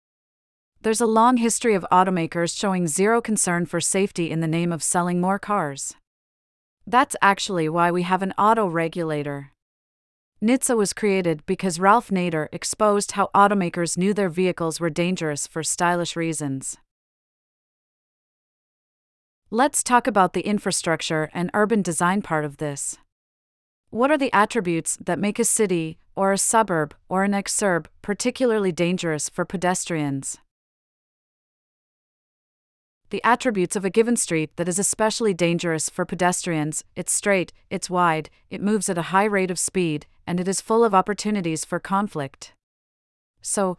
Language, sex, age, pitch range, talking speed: English, female, 30-49, 165-200 Hz, 145 wpm